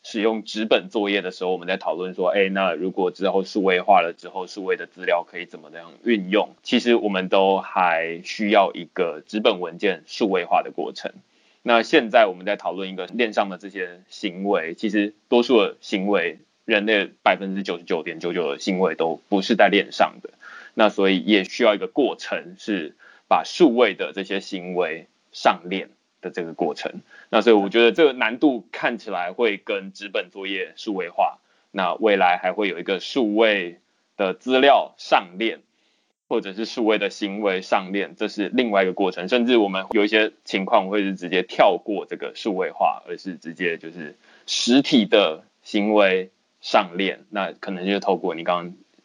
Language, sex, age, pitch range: Chinese, male, 20-39, 95-115 Hz